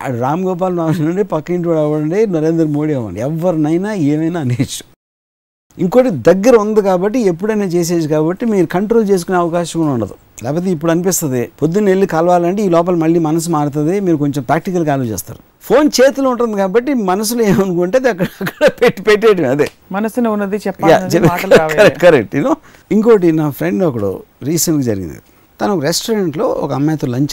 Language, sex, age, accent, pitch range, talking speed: Telugu, male, 60-79, native, 145-205 Hz, 140 wpm